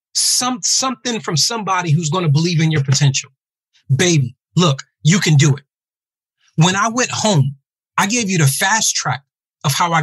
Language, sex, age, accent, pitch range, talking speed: English, male, 30-49, American, 145-200 Hz, 180 wpm